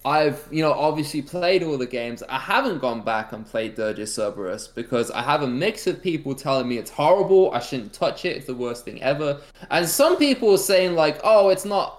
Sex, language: male, English